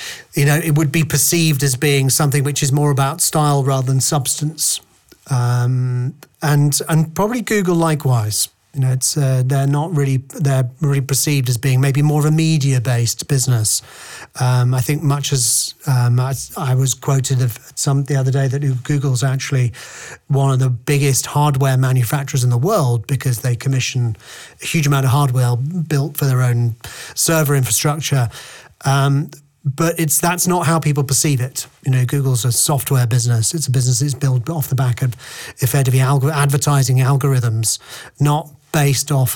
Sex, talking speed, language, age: male, 175 wpm, English, 40-59